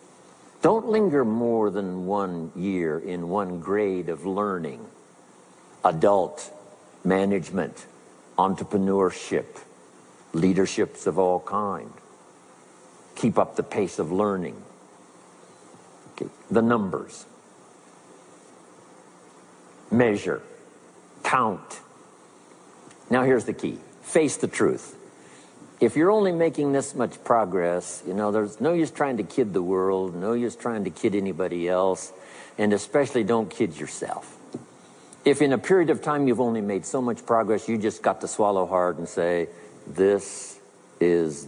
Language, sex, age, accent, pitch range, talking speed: English, male, 60-79, American, 90-120 Hz, 125 wpm